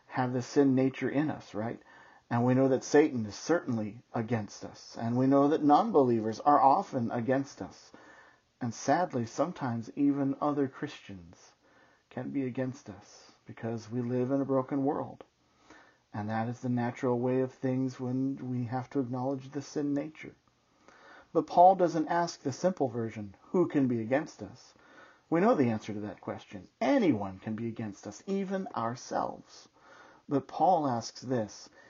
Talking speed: 165 wpm